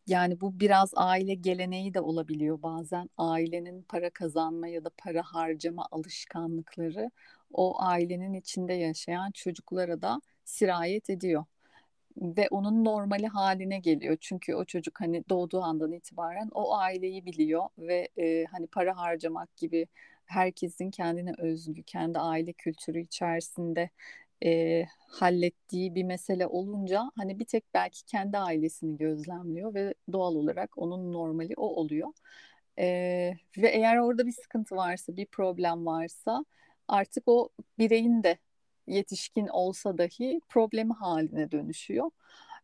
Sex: female